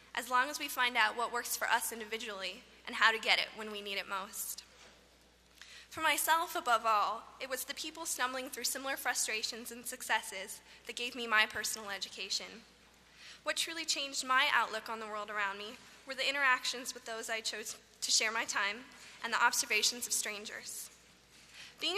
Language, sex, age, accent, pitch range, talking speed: English, female, 10-29, American, 220-270 Hz, 185 wpm